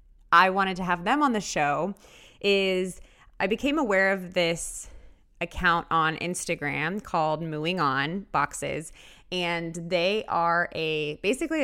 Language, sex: English, female